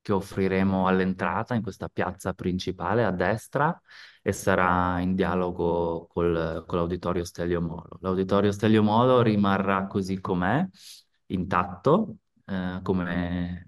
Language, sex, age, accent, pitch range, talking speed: Italian, male, 20-39, native, 90-105 Hz, 115 wpm